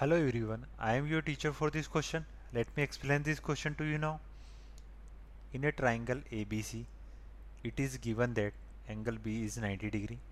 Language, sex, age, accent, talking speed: Hindi, male, 20-39, native, 190 wpm